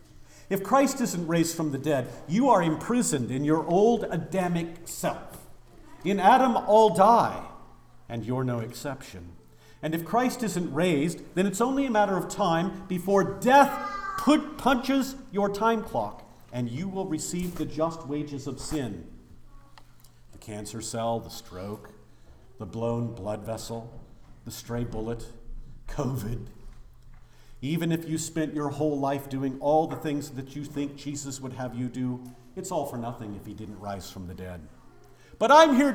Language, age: English, 50-69